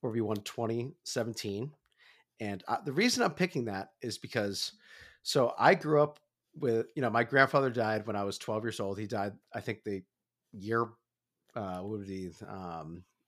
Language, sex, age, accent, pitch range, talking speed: English, male, 30-49, American, 105-130 Hz, 185 wpm